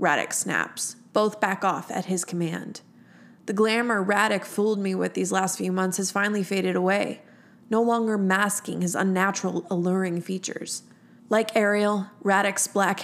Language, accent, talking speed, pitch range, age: English, American, 150 wpm, 185-230 Hz, 20-39